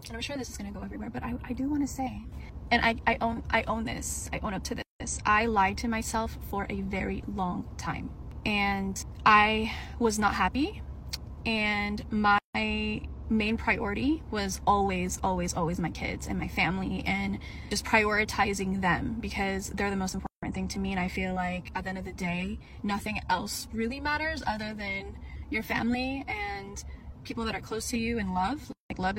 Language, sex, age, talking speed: English, female, 10-29, 195 wpm